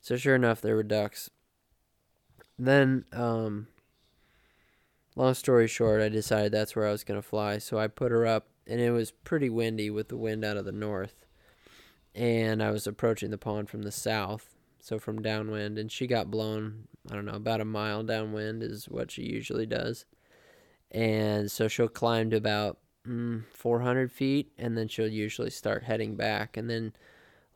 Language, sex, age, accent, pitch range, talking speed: English, male, 20-39, American, 105-120 Hz, 185 wpm